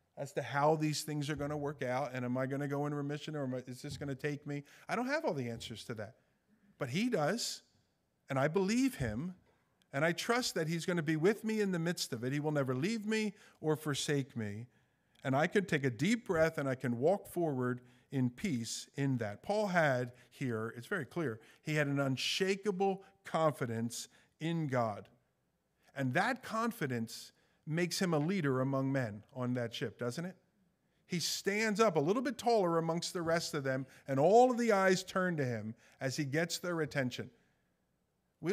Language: English